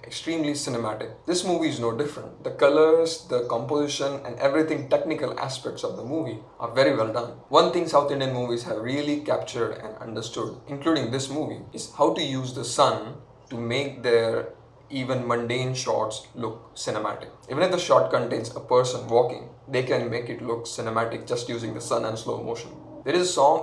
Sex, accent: male, Indian